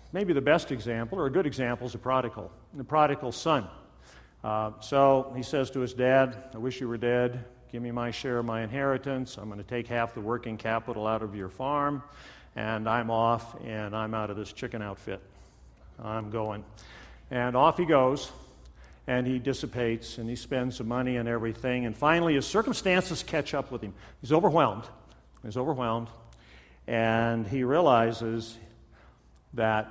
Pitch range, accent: 105-130 Hz, American